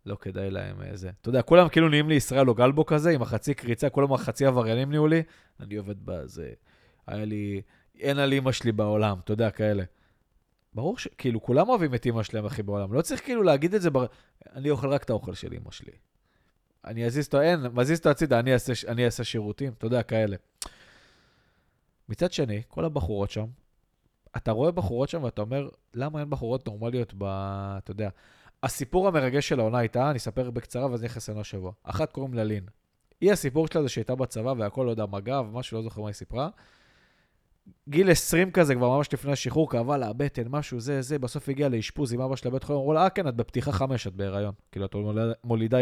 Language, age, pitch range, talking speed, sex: Hebrew, 20-39, 105-145 Hz, 195 wpm, male